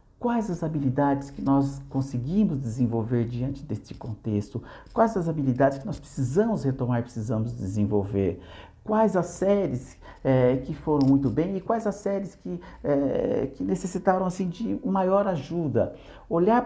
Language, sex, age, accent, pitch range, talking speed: Portuguese, male, 60-79, Brazilian, 135-190 Hz, 135 wpm